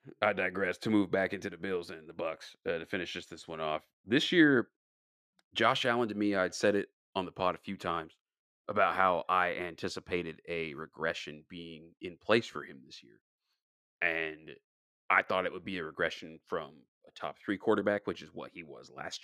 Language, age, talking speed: English, 30-49, 205 wpm